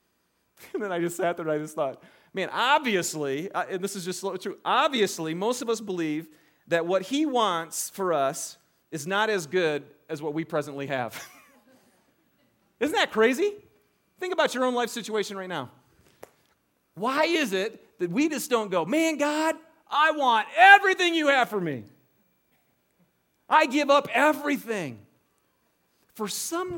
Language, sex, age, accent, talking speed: English, male, 40-59, American, 160 wpm